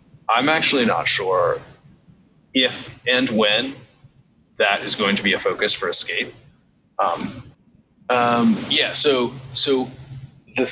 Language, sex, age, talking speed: English, male, 30-49, 125 wpm